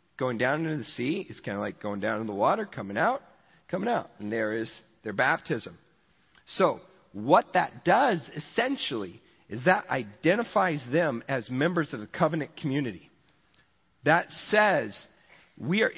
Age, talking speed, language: 40-59, 160 wpm, English